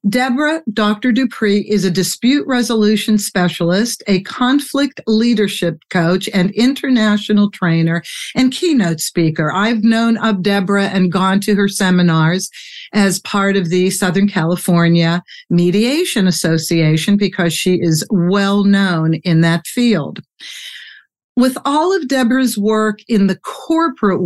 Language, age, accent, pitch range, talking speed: English, 50-69, American, 175-230 Hz, 125 wpm